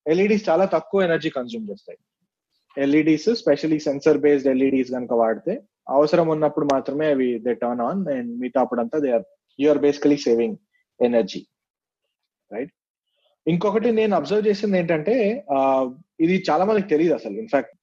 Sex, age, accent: male, 30-49, native